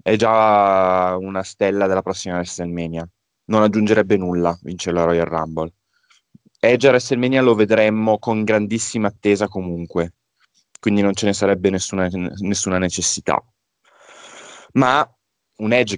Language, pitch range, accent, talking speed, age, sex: Italian, 95-110 Hz, native, 130 wpm, 20-39, male